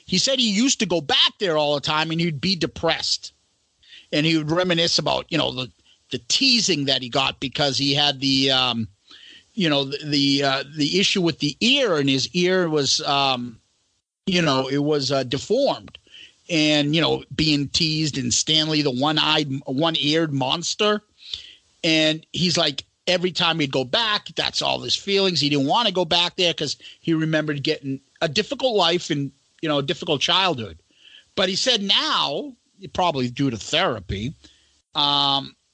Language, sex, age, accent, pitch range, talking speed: English, male, 40-59, American, 140-175 Hz, 180 wpm